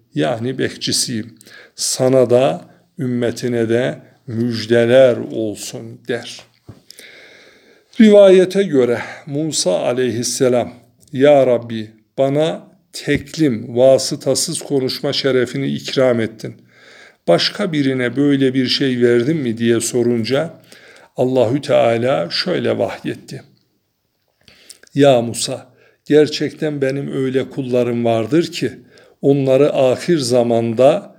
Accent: native